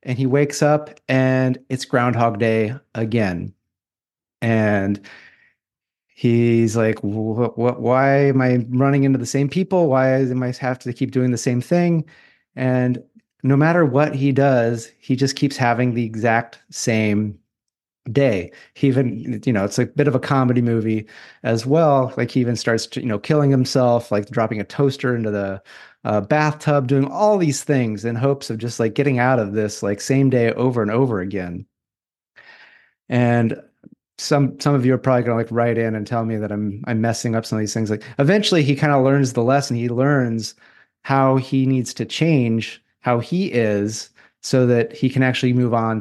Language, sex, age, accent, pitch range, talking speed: English, male, 30-49, American, 115-135 Hz, 190 wpm